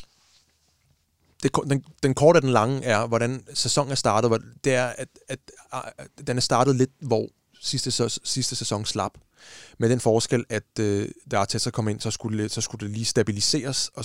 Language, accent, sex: Danish, native, male